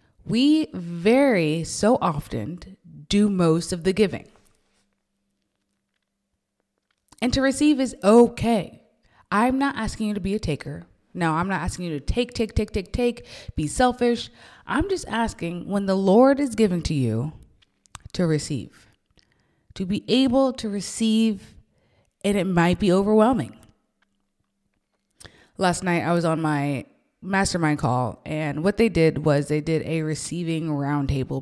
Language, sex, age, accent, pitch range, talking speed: English, female, 20-39, American, 150-215 Hz, 145 wpm